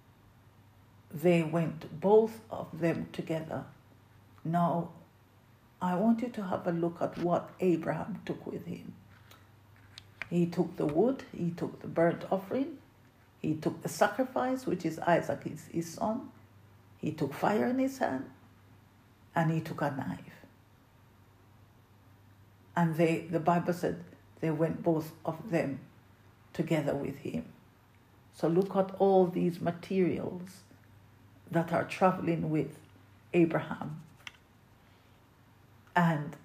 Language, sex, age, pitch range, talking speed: English, female, 50-69, 105-170 Hz, 125 wpm